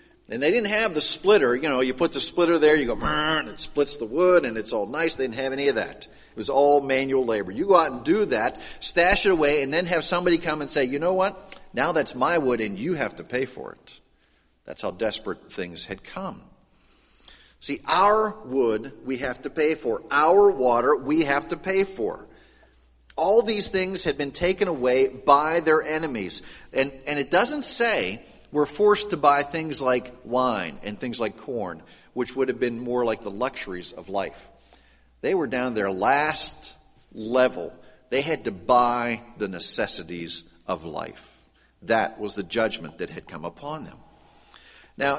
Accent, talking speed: American, 195 wpm